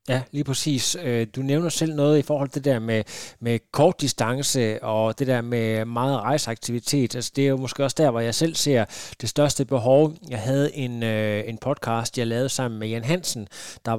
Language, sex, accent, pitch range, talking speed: Danish, male, native, 115-145 Hz, 205 wpm